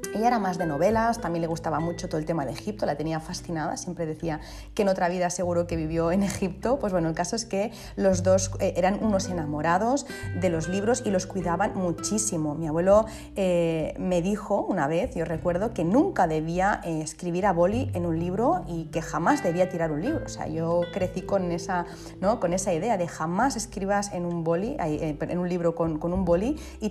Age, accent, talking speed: 30-49, Spanish, 205 wpm